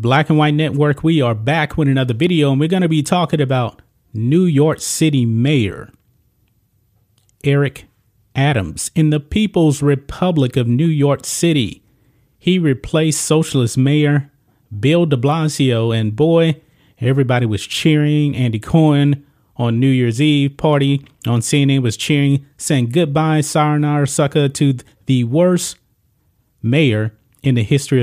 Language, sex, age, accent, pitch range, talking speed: English, male, 30-49, American, 120-150 Hz, 140 wpm